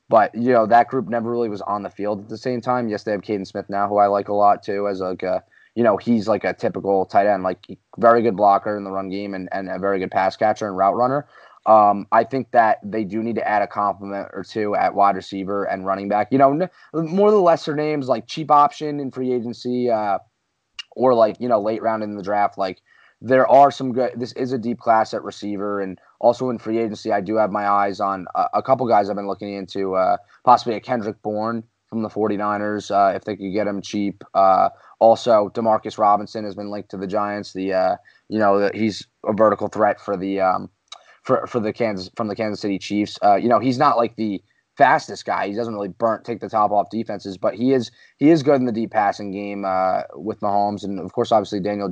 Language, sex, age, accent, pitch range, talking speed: English, male, 20-39, American, 100-115 Hz, 245 wpm